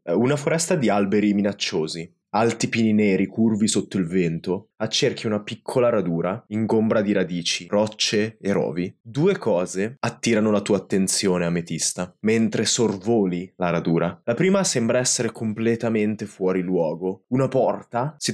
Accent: native